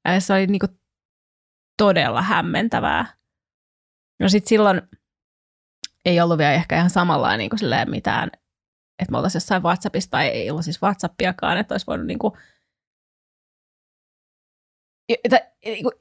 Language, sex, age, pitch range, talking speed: Finnish, female, 20-39, 175-205 Hz, 120 wpm